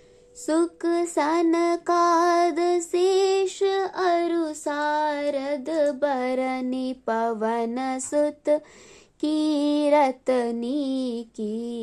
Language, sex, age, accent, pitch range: Hindi, female, 20-39, native, 250-310 Hz